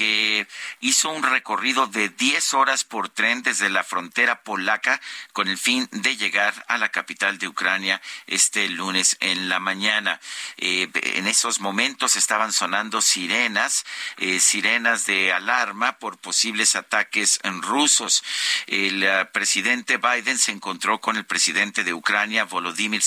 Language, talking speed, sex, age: Spanish, 145 wpm, male, 50-69